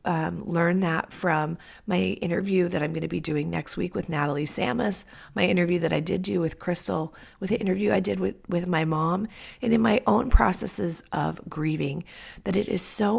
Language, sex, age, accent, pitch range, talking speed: English, female, 30-49, American, 155-190 Hz, 205 wpm